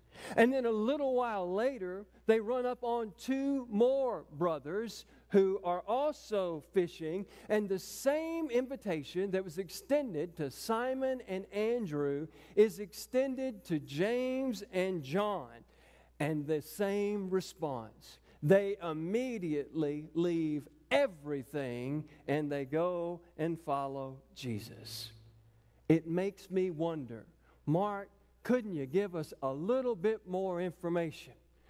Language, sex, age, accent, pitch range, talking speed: English, male, 50-69, American, 160-235 Hz, 115 wpm